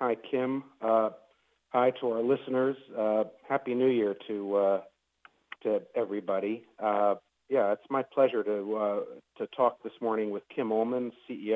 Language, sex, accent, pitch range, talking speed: English, male, American, 100-125 Hz, 155 wpm